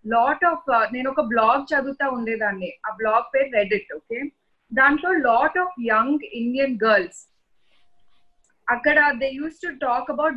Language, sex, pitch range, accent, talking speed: English, female, 225-285 Hz, Indian, 120 wpm